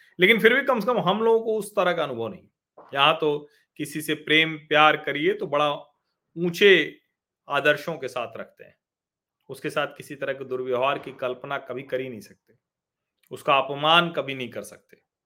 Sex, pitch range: male, 120-180 Hz